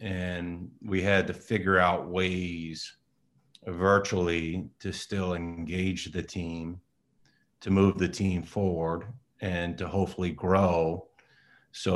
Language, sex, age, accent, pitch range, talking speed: English, male, 40-59, American, 90-100 Hz, 115 wpm